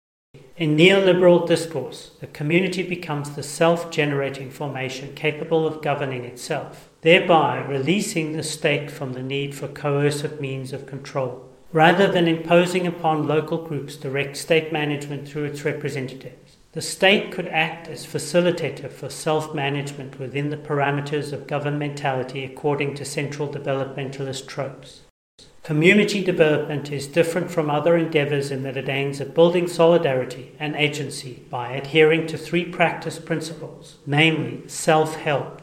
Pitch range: 140-165 Hz